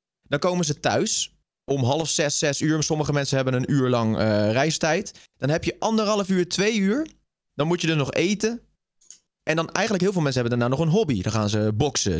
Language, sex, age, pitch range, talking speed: Dutch, male, 20-39, 110-150 Hz, 220 wpm